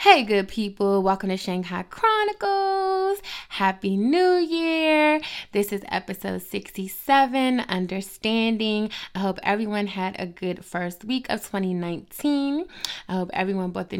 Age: 20-39